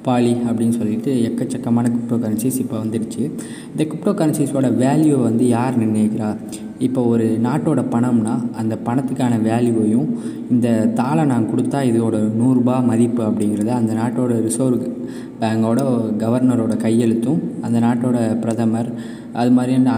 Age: 20-39